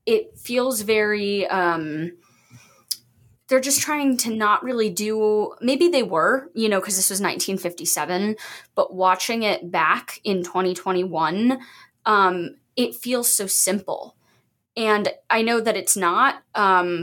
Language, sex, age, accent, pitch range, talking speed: English, female, 20-39, American, 180-215 Hz, 135 wpm